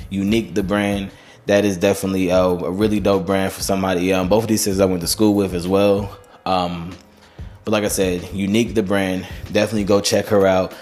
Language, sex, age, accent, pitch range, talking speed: English, male, 20-39, American, 95-105 Hz, 205 wpm